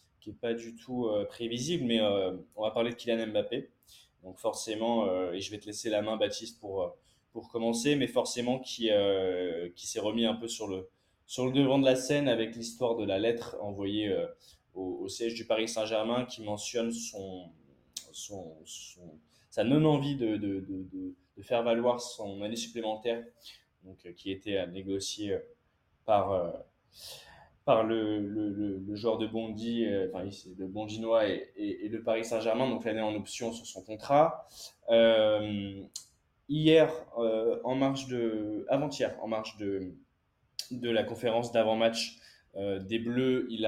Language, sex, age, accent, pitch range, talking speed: French, male, 20-39, French, 100-120 Hz, 170 wpm